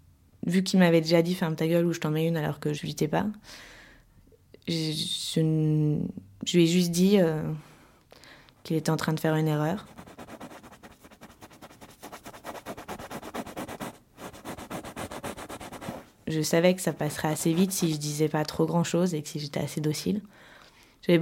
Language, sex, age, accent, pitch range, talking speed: French, female, 20-39, French, 155-180 Hz, 165 wpm